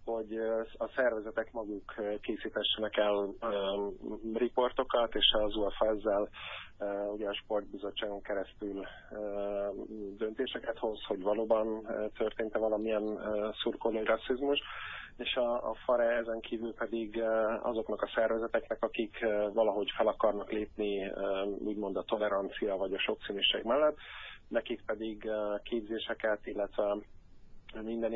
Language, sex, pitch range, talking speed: Hungarian, male, 100-110 Hz, 125 wpm